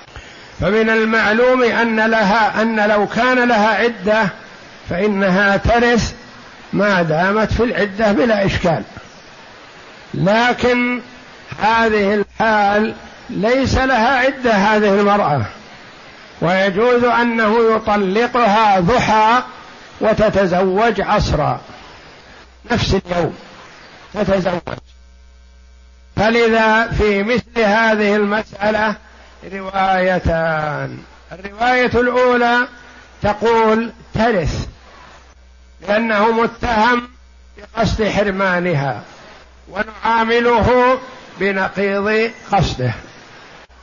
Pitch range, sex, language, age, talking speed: 175-230 Hz, male, Arabic, 60-79, 70 wpm